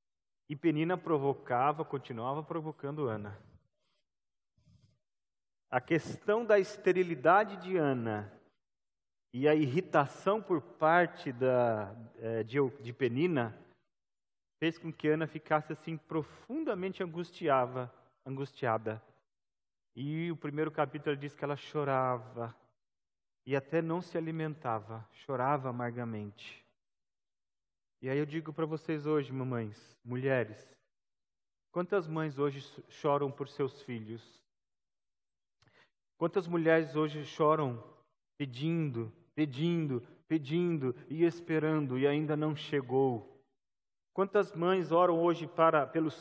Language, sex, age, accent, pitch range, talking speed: Portuguese, male, 40-59, Brazilian, 125-160 Hz, 100 wpm